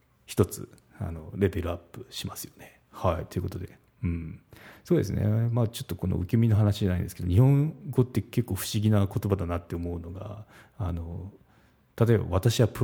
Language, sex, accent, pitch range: Japanese, male, native, 90-115 Hz